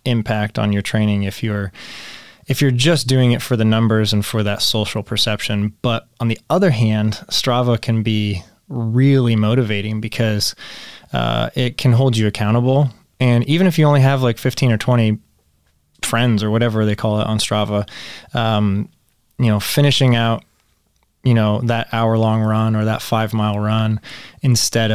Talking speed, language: 170 wpm, English